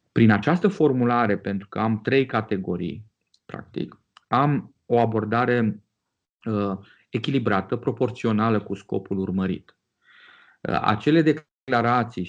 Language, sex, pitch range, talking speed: Romanian, male, 95-115 Hz, 95 wpm